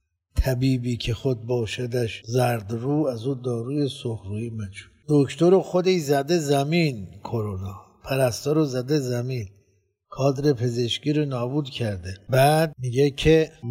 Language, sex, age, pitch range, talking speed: Persian, male, 60-79, 115-145 Hz, 120 wpm